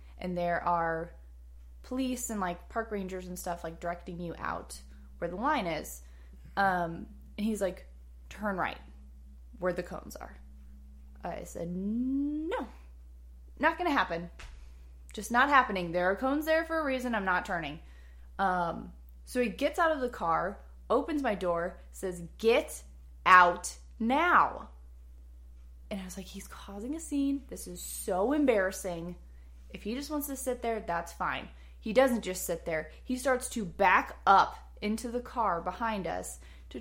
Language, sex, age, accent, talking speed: English, female, 20-39, American, 165 wpm